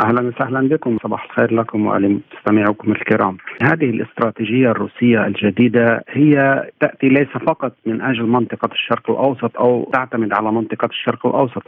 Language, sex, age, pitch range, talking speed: Arabic, male, 50-69, 120-140 Hz, 140 wpm